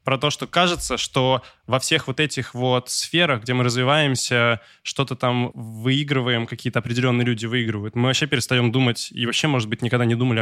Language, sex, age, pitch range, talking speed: Russian, male, 20-39, 120-140 Hz, 185 wpm